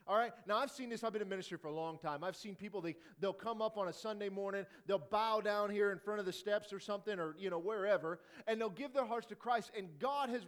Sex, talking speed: male, 285 wpm